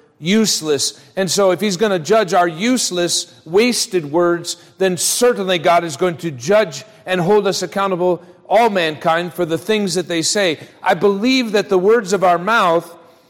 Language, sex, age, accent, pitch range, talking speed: English, male, 40-59, American, 155-195 Hz, 175 wpm